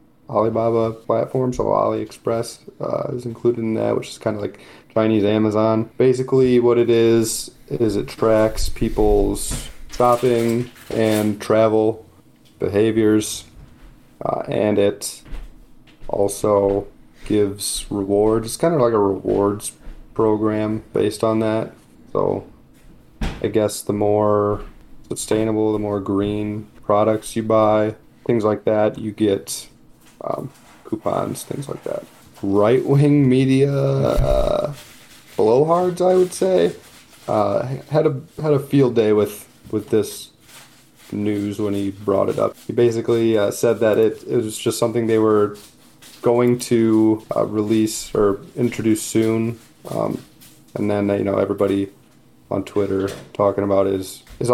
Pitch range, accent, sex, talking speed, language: 105-120 Hz, American, male, 130 wpm, English